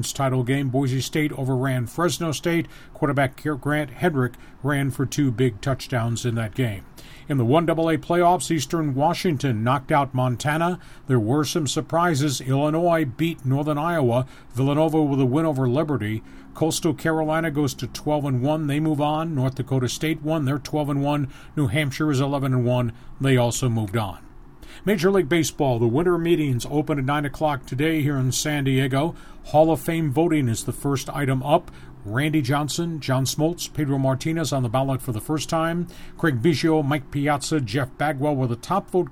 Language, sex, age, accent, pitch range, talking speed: English, male, 40-59, American, 130-160 Hz, 170 wpm